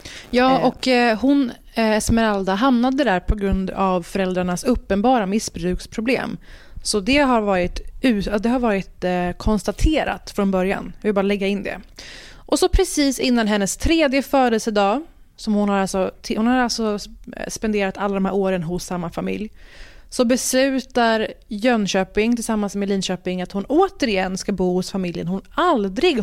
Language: Swedish